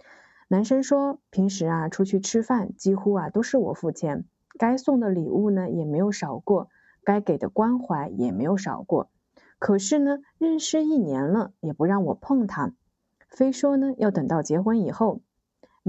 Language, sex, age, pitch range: Chinese, female, 20-39, 175-230 Hz